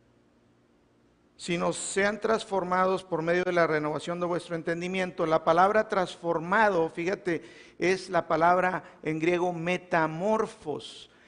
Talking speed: 115 wpm